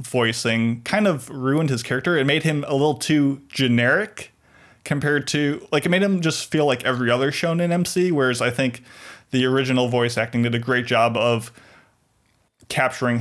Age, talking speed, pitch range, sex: 20-39, 175 wpm, 120-160 Hz, male